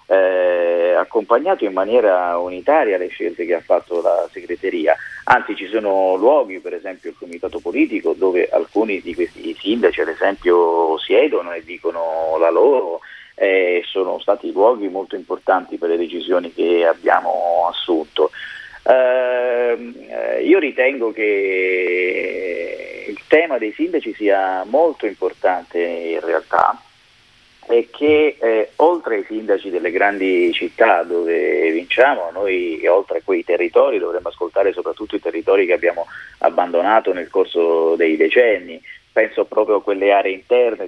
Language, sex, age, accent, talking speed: Italian, male, 40-59, native, 135 wpm